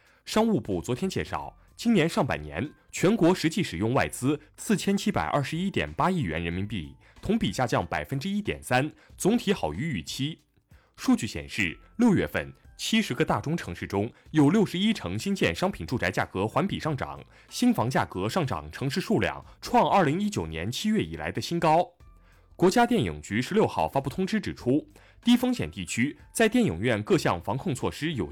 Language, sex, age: Chinese, male, 20-39